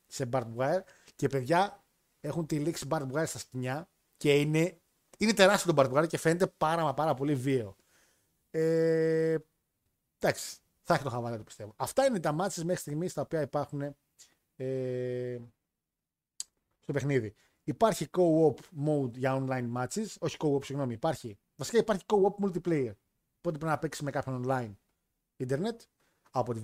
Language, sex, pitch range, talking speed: Greek, male, 135-180 Hz, 145 wpm